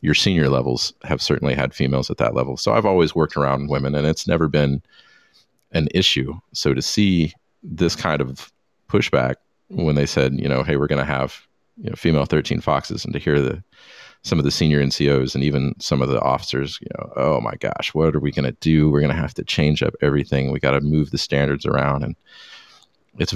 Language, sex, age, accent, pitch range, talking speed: English, male, 40-59, American, 70-80 Hz, 225 wpm